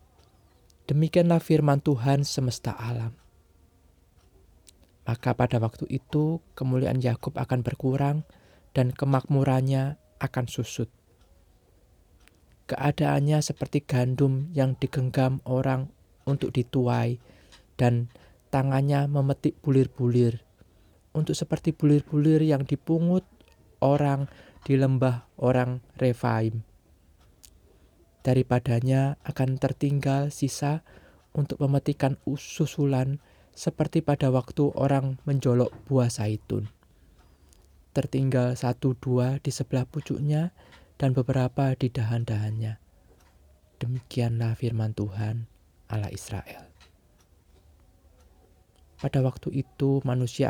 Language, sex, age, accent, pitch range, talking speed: Indonesian, male, 20-39, native, 100-140 Hz, 85 wpm